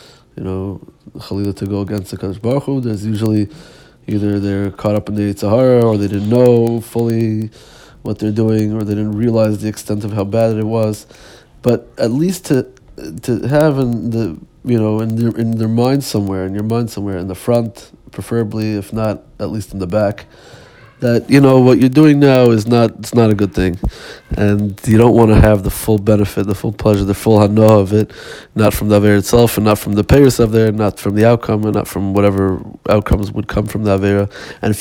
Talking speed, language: 215 wpm, Hebrew